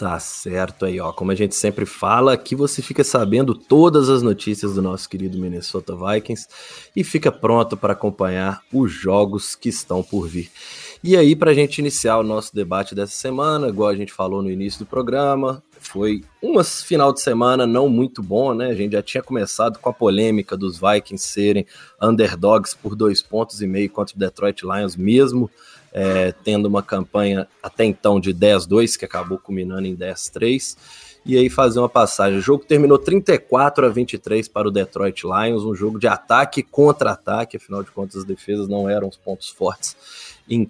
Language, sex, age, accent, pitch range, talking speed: Portuguese, male, 20-39, Brazilian, 95-125 Hz, 185 wpm